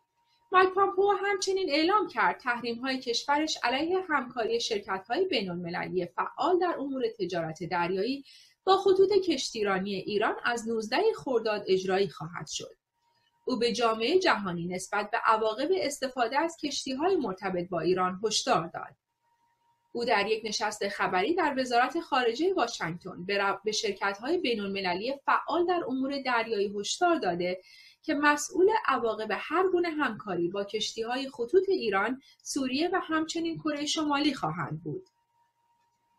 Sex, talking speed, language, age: female, 130 wpm, Persian, 30-49